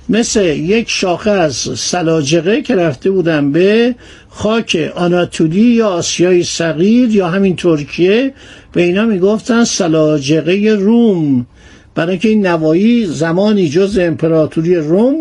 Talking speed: 115 wpm